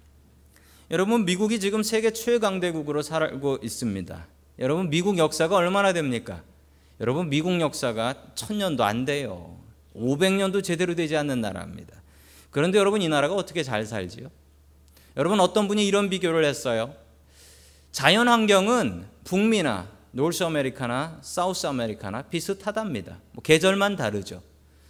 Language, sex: Korean, male